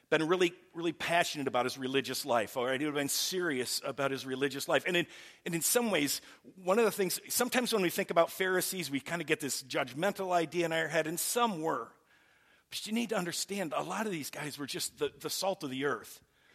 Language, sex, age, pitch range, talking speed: English, male, 50-69, 155-200 Hz, 240 wpm